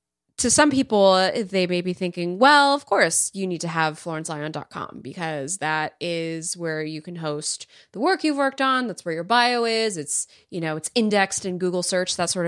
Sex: female